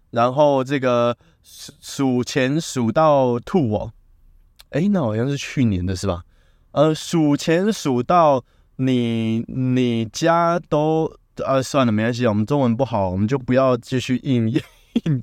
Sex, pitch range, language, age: male, 105-140 Hz, Chinese, 20-39